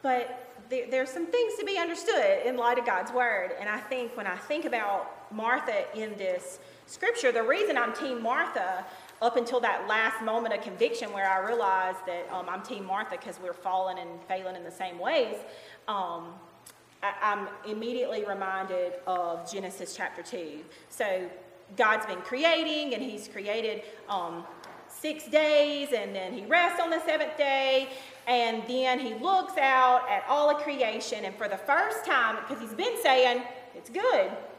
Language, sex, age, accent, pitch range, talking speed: English, female, 30-49, American, 190-275 Hz, 170 wpm